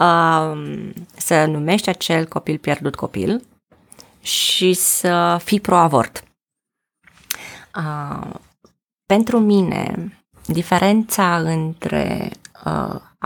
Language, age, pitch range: Romanian, 20-39, 160-195 Hz